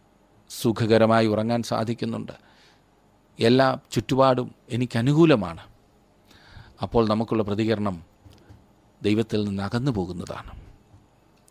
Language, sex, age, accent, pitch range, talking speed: Malayalam, male, 40-59, native, 100-140 Hz, 65 wpm